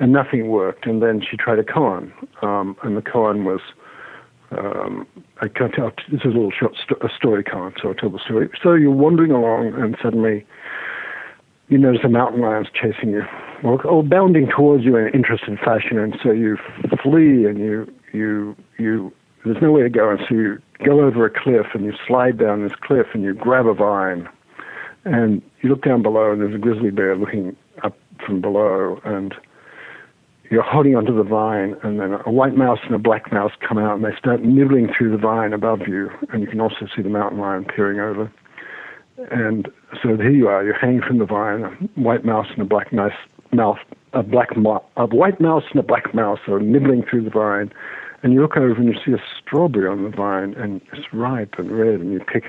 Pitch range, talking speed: 105-125 Hz, 215 wpm